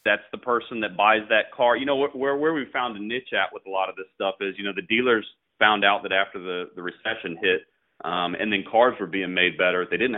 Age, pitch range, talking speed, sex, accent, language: 30-49, 90-120 Hz, 265 wpm, male, American, English